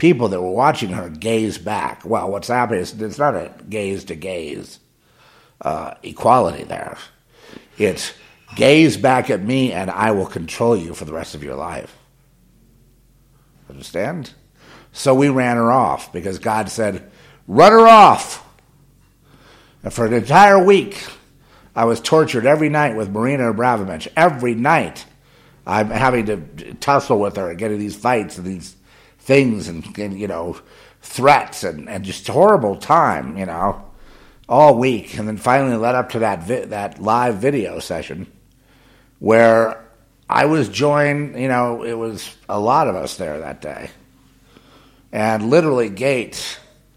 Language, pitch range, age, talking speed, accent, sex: English, 105-135 Hz, 50-69, 150 wpm, American, male